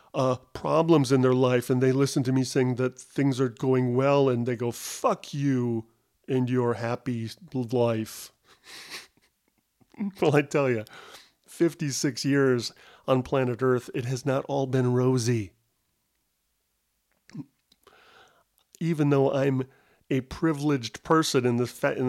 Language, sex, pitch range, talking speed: English, male, 120-140 Hz, 135 wpm